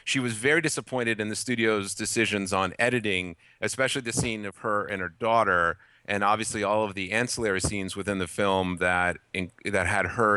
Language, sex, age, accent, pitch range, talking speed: English, male, 30-49, American, 100-125 Hz, 190 wpm